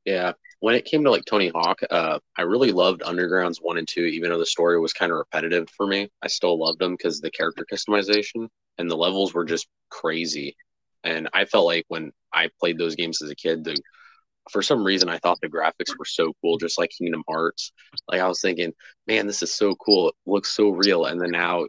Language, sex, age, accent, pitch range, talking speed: English, male, 20-39, American, 85-95 Hz, 225 wpm